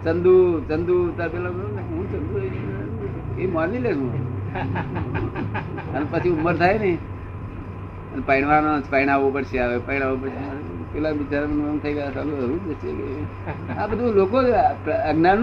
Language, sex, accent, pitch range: Gujarati, male, native, 100-150 Hz